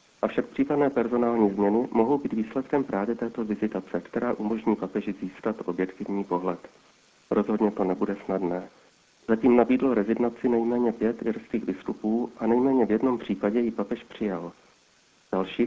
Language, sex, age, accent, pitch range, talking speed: Czech, male, 40-59, native, 100-120 Hz, 140 wpm